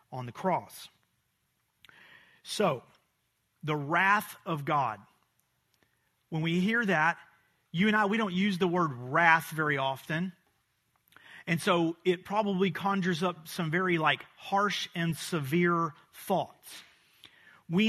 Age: 40-59